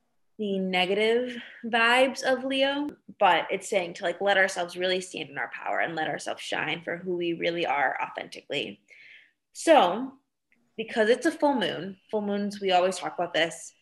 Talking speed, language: 175 wpm, English